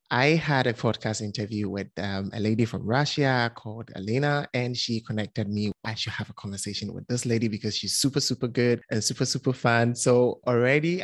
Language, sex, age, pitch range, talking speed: English, male, 20-39, 110-130 Hz, 195 wpm